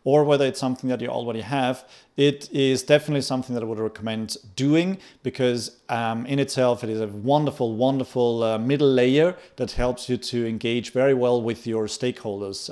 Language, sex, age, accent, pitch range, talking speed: English, male, 40-59, German, 115-140 Hz, 185 wpm